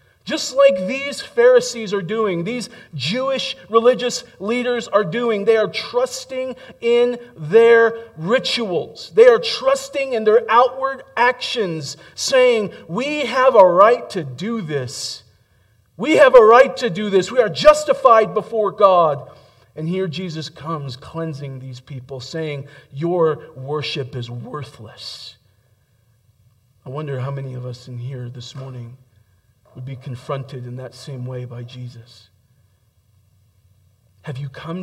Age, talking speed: 40-59, 135 wpm